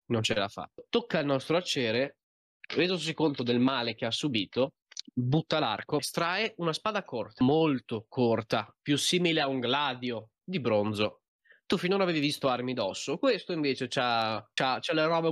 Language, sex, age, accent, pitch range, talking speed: Italian, male, 20-39, native, 120-155 Hz, 170 wpm